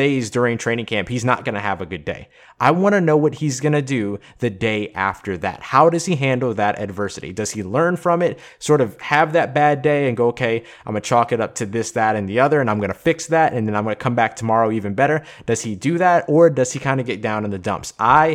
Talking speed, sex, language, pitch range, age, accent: 290 wpm, male, English, 110-150 Hz, 20-39, American